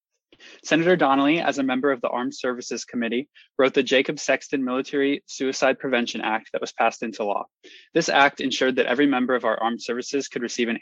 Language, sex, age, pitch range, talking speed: English, male, 20-39, 115-140 Hz, 200 wpm